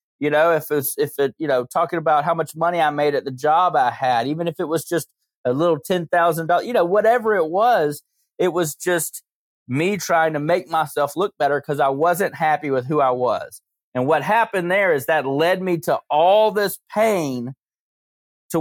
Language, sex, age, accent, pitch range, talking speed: English, male, 30-49, American, 130-170 Hz, 205 wpm